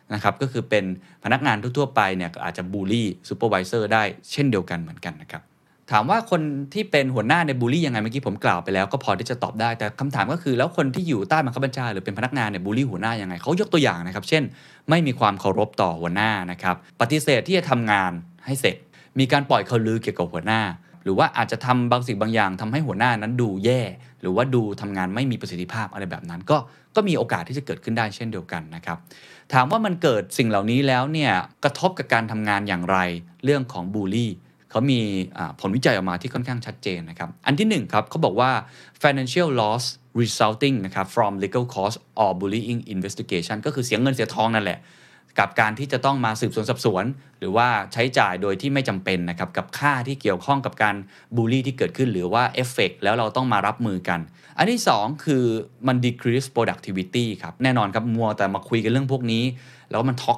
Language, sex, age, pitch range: Thai, male, 20-39, 100-130 Hz